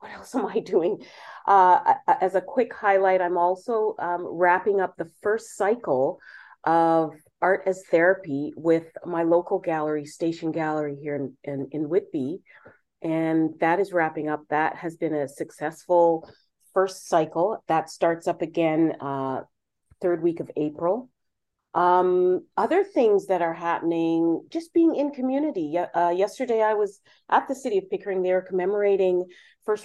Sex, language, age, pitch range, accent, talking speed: female, English, 40-59, 160-195 Hz, American, 155 wpm